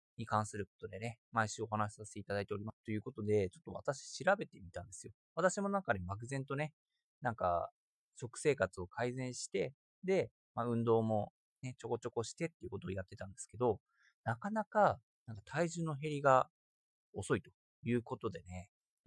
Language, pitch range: Japanese, 100-155 Hz